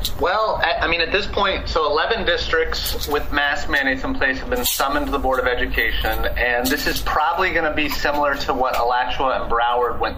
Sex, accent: male, American